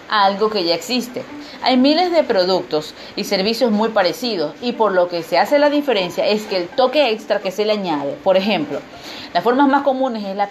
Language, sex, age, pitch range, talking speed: Spanish, female, 40-59, 180-265 Hz, 210 wpm